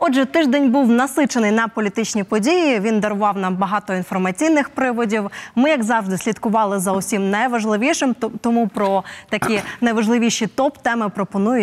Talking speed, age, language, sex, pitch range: 135 wpm, 20-39, Ukrainian, female, 210-250 Hz